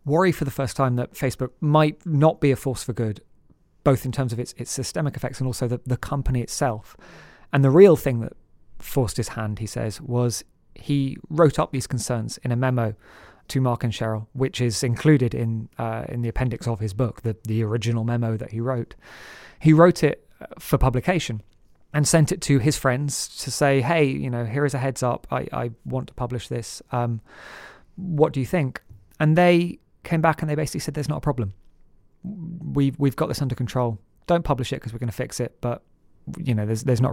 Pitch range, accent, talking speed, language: 115-140 Hz, British, 215 wpm, English